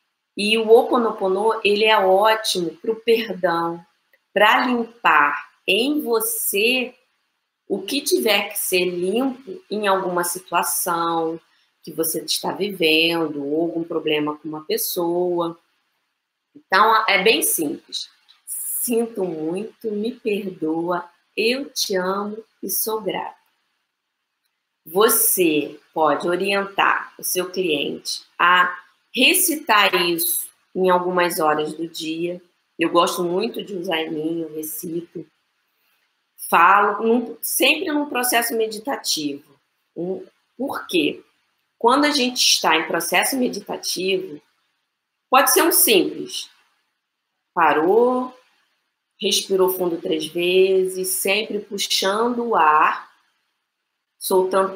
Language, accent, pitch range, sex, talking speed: Portuguese, Brazilian, 175-235 Hz, female, 105 wpm